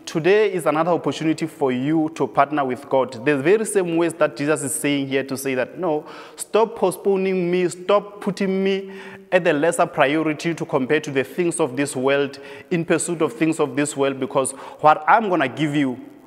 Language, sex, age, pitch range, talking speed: English, male, 20-39, 140-170 Hz, 205 wpm